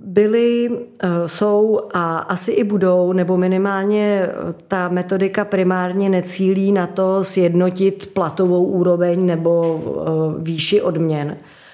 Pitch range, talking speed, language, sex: 160-185 Hz, 100 wpm, Czech, female